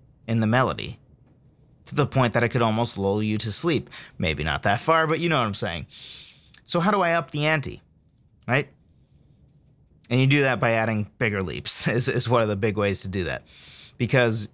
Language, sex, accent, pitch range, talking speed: English, male, American, 115-145 Hz, 210 wpm